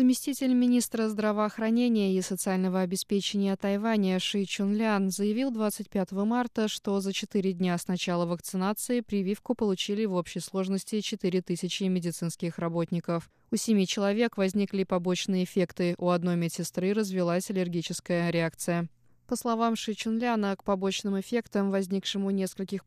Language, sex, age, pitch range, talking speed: Russian, female, 20-39, 180-210 Hz, 130 wpm